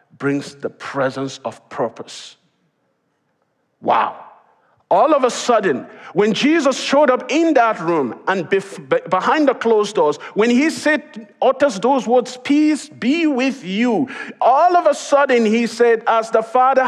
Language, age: English, 50-69